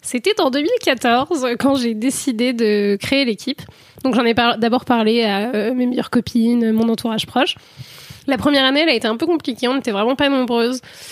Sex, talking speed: female, 200 wpm